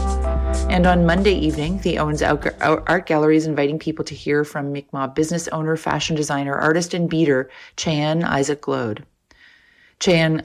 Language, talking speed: English, 150 wpm